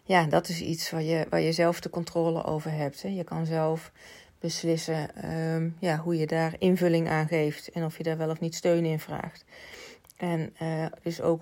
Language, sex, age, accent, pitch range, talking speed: Dutch, female, 30-49, Dutch, 160-175 Hz, 205 wpm